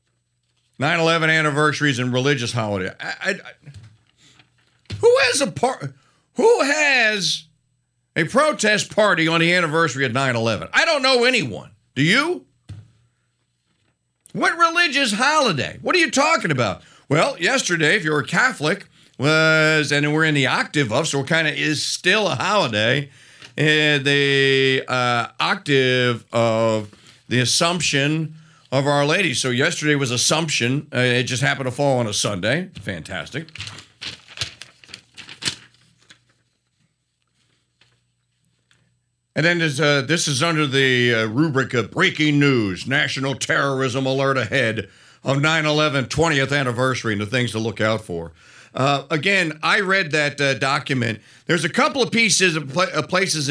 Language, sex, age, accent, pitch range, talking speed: English, male, 50-69, American, 125-165 Hz, 140 wpm